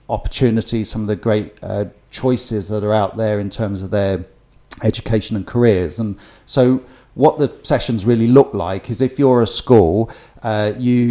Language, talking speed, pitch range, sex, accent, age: English, 180 wpm, 110-125 Hz, male, British, 40-59